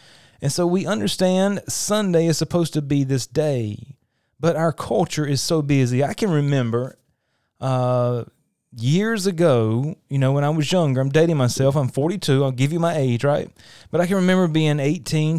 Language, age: English, 30-49